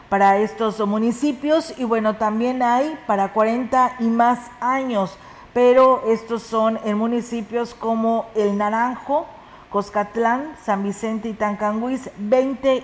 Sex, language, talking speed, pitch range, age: female, Spanish, 120 wpm, 215-245 Hz, 40-59